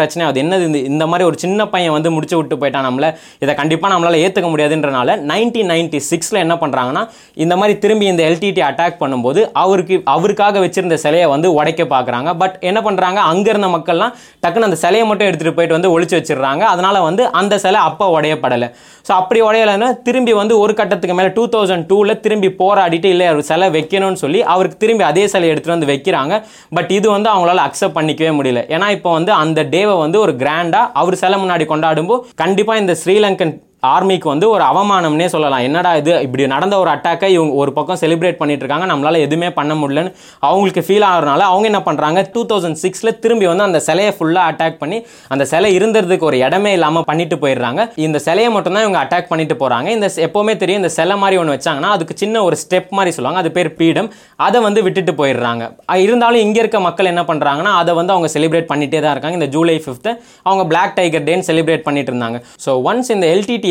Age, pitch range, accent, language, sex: 20-39, 155-200 Hz, native, Tamil, male